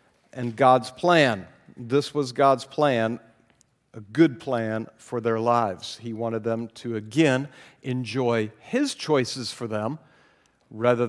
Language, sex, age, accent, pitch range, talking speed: English, male, 50-69, American, 125-160 Hz, 130 wpm